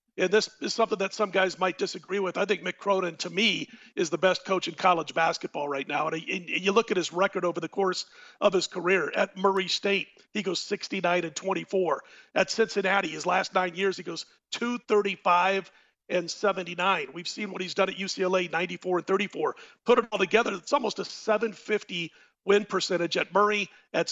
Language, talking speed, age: English, 200 wpm, 40-59